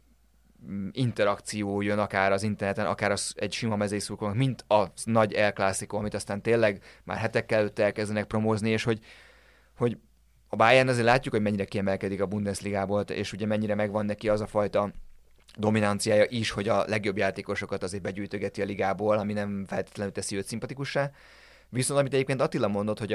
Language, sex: Hungarian, male